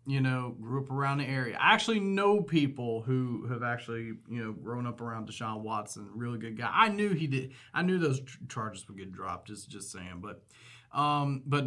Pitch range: 115-140 Hz